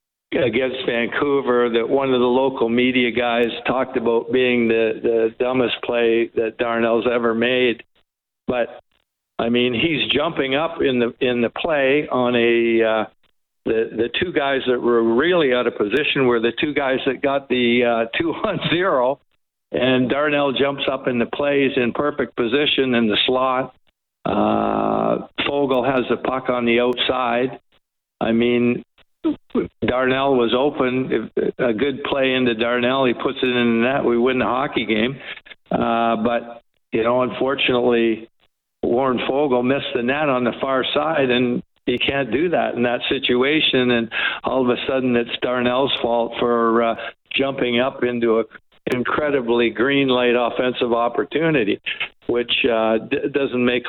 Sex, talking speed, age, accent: male, 160 wpm, 60-79, American